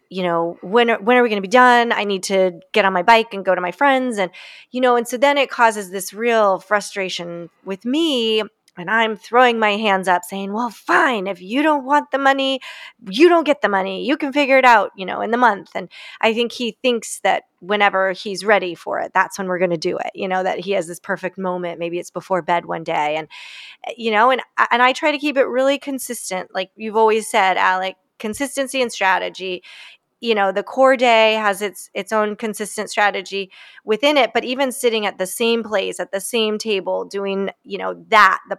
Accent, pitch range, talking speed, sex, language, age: American, 190-245 Hz, 230 wpm, female, English, 20-39